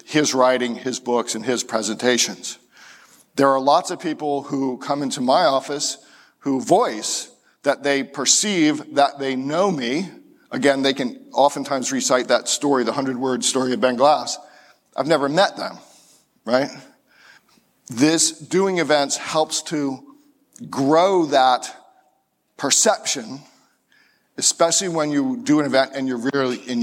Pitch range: 130-155 Hz